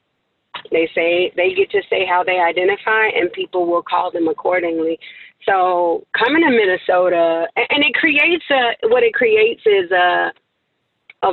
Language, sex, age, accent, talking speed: English, female, 30-49, American, 155 wpm